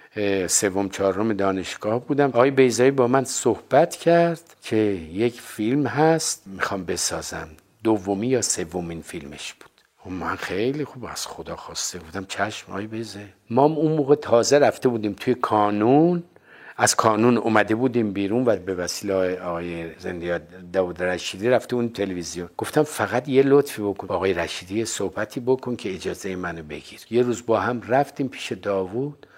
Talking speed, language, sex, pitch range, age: 155 wpm, Persian, male, 95-120 Hz, 50-69